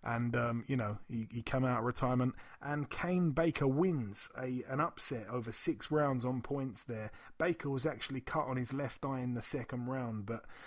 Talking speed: 200 wpm